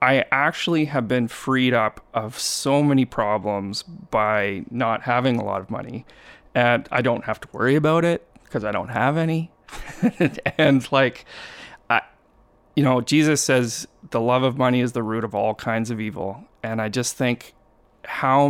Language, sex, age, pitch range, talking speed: English, male, 30-49, 110-130 Hz, 175 wpm